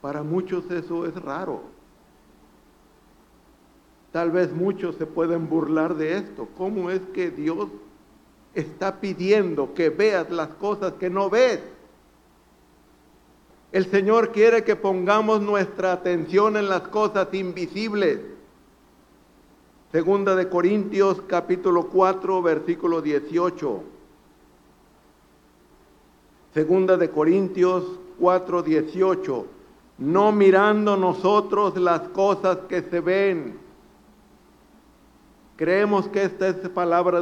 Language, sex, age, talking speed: Spanish, male, 60-79, 100 wpm